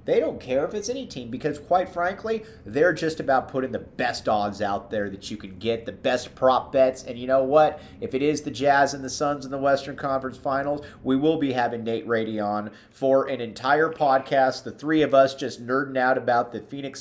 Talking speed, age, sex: 230 wpm, 30-49, male